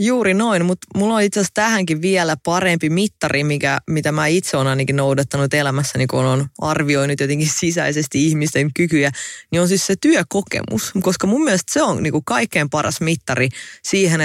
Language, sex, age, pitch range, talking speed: English, female, 20-39, 135-175 Hz, 170 wpm